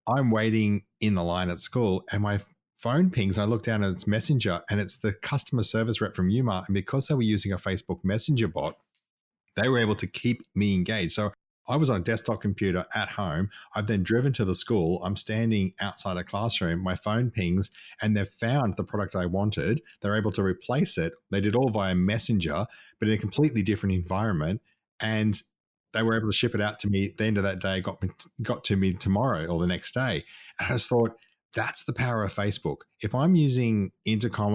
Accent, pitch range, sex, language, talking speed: Australian, 95-115 Hz, male, English, 220 wpm